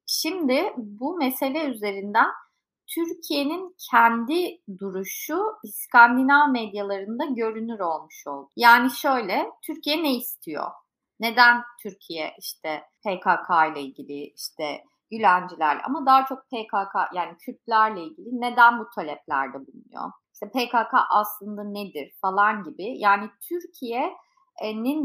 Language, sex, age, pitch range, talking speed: Turkish, female, 30-49, 200-265 Hz, 105 wpm